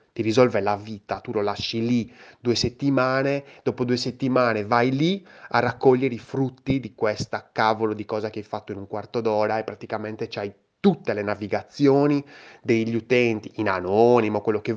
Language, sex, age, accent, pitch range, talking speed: Italian, male, 20-39, native, 105-140 Hz, 175 wpm